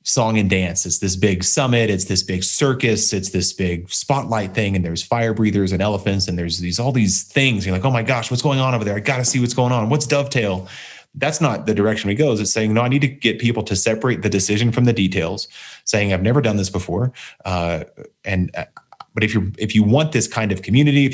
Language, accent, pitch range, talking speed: English, American, 95-120 Hz, 245 wpm